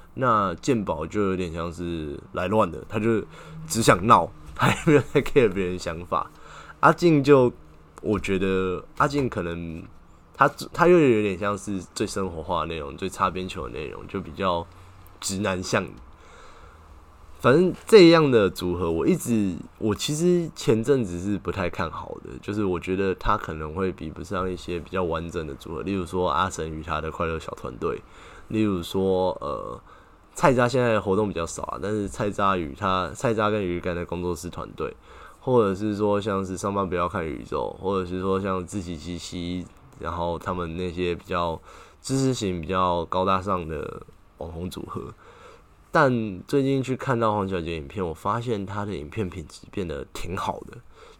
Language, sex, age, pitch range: Chinese, male, 20-39, 85-105 Hz